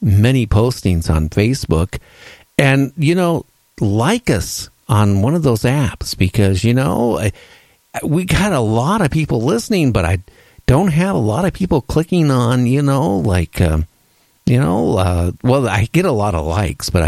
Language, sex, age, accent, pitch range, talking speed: English, male, 50-69, American, 90-140 Hz, 175 wpm